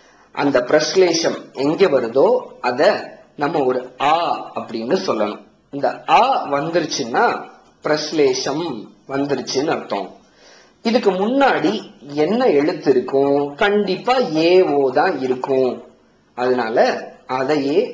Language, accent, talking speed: Tamil, native, 45 wpm